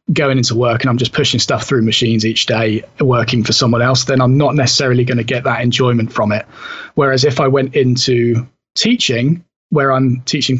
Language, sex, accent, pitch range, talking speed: English, male, British, 125-145 Hz, 205 wpm